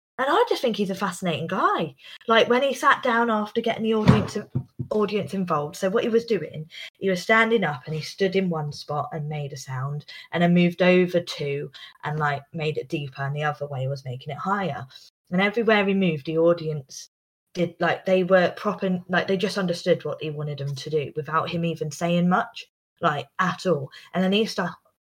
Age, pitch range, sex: 20-39, 155-210 Hz, female